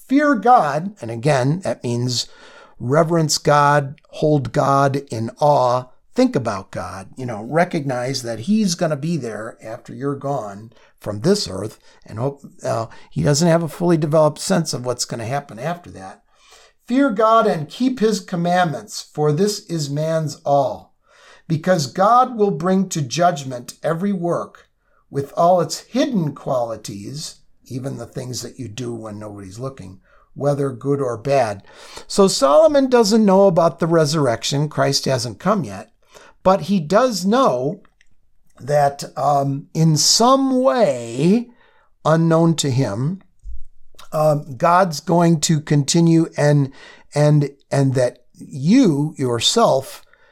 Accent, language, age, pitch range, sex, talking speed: American, English, 50-69, 135-185 Hz, male, 140 wpm